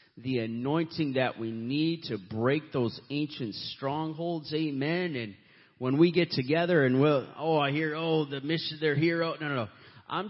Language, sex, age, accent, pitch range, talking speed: English, male, 30-49, American, 120-150 Hz, 180 wpm